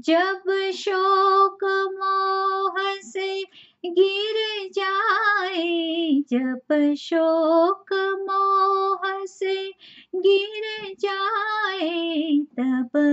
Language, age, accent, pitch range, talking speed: English, 30-49, Indian, 290-390 Hz, 60 wpm